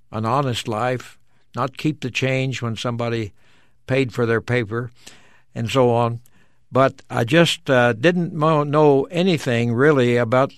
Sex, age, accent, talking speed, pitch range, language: male, 60-79, American, 140 wpm, 115-140 Hz, English